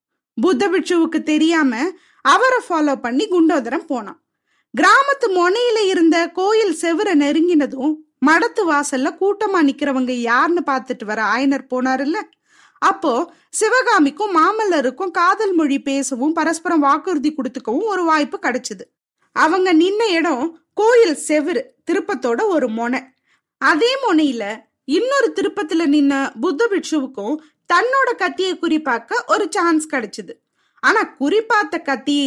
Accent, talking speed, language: native, 90 wpm, Tamil